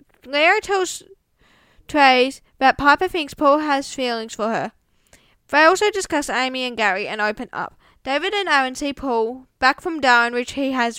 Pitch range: 235-285 Hz